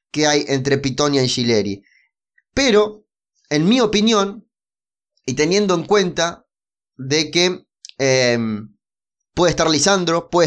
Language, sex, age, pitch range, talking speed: Spanish, male, 20-39, 145-195 Hz, 120 wpm